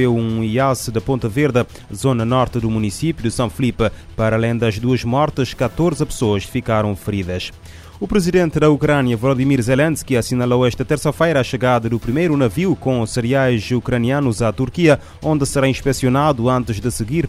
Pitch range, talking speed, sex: 115-140 Hz, 165 wpm, male